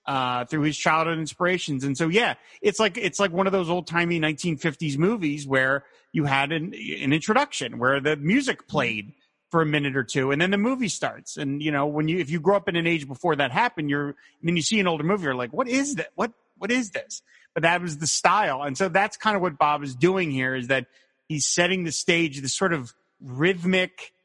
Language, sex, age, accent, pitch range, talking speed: English, male, 30-49, American, 140-190 Hz, 245 wpm